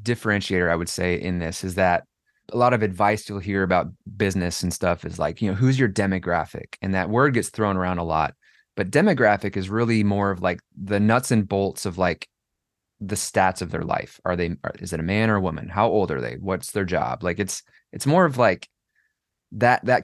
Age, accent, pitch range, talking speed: 20-39, American, 90-115 Hz, 225 wpm